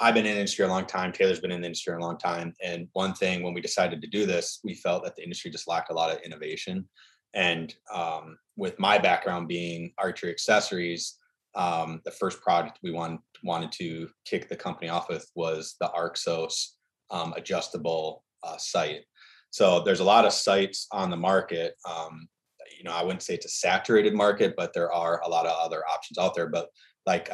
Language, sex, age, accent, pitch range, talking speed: English, male, 20-39, American, 85-95 Hz, 205 wpm